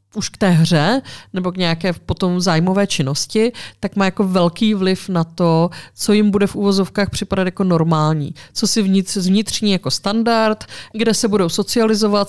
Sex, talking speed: female, 170 wpm